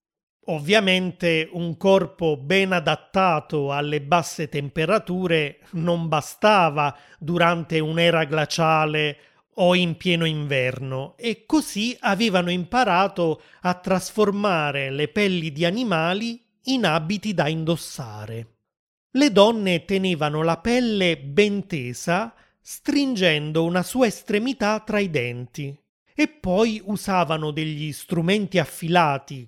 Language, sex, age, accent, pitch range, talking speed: Italian, male, 30-49, native, 155-200 Hz, 105 wpm